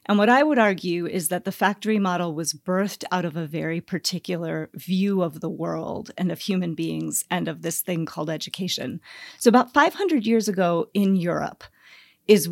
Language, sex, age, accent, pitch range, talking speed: English, female, 40-59, American, 175-210 Hz, 185 wpm